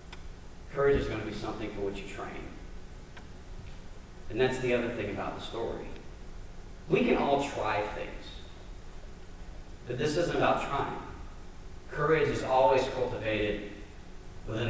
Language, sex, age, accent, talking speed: English, male, 40-59, American, 135 wpm